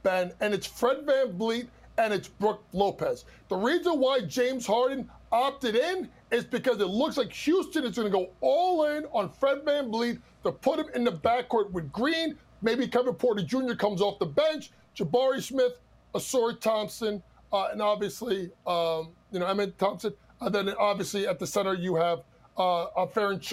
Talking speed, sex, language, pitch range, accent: 180 wpm, male, English, 205-290 Hz, American